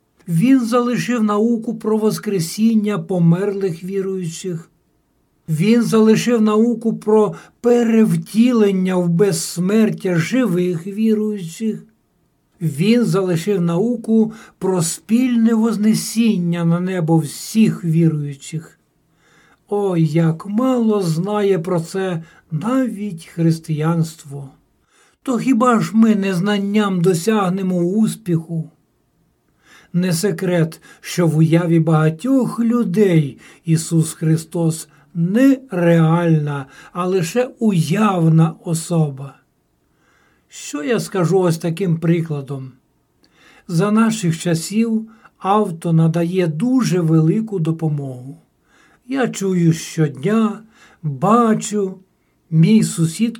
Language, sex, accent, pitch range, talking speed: Ukrainian, male, native, 165-220 Hz, 85 wpm